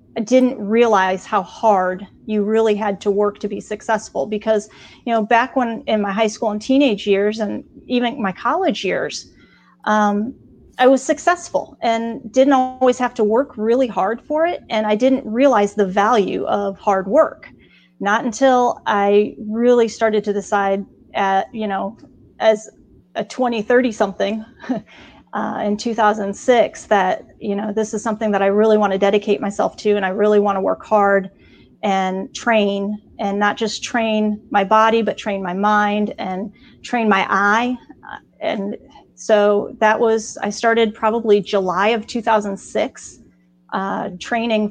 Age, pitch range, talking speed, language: 30-49, 205-235 Hz, 160 wpm, English